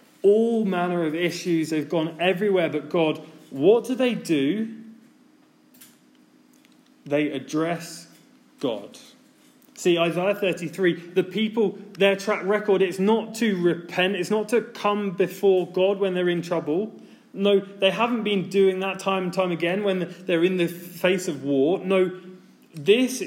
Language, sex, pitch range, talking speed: English, male, 165-225 Hz, 145 wpm